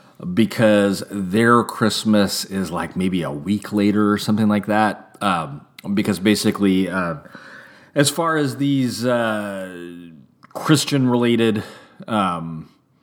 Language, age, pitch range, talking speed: English, 30-49, 90-115 Hz, 115 wpm